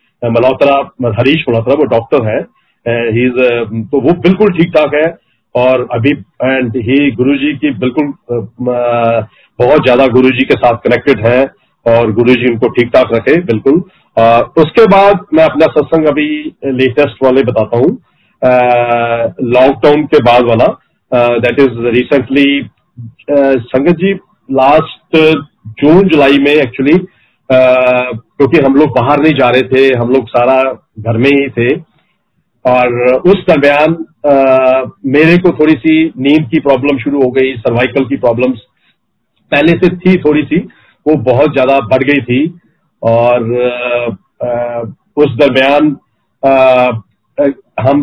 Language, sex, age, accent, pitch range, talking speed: Hindi, male, 40-59, native, 120-145 Hz, 140 wpm